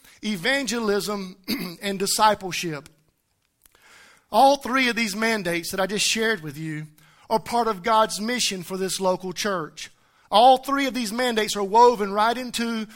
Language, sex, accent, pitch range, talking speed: English, male, American, 200-265 Hz, 150 wpm